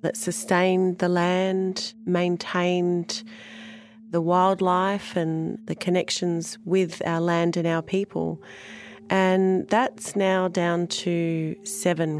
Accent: Australian